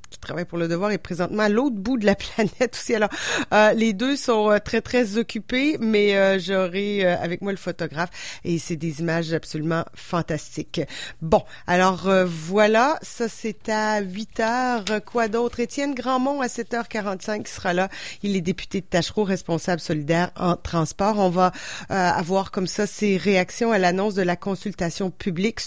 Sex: female